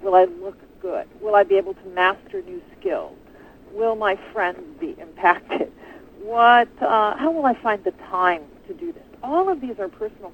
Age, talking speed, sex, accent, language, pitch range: 40-59, 190 wpm, female, American, English, 195-300 Hz